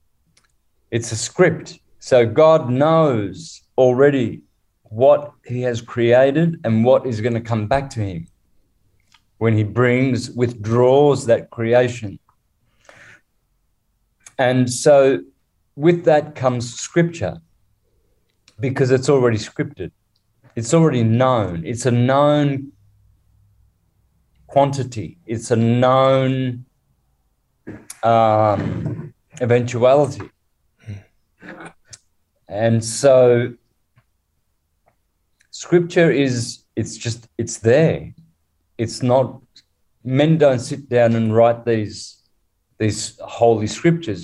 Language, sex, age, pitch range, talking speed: English, male, 30-49, 110-135 Hz, 90 wpm